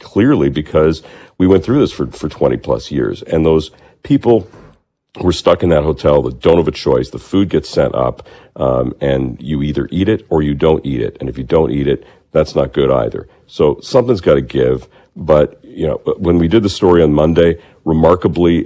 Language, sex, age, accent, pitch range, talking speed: English, male, 50-69, American, 70-85 Hz, 210 wpm